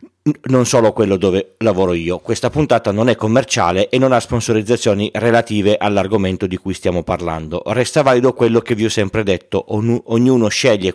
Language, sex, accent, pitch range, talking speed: Italian, male, native, 90-120 Hz, 170 wpm